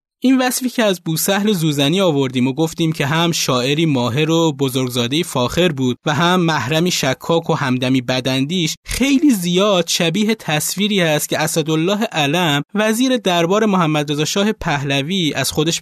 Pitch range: 145-195 Hz